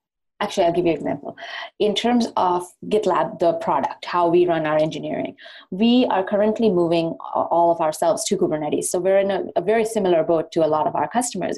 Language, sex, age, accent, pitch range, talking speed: English, female, 20-39, Indian, 170-240 Hz, 205 wpm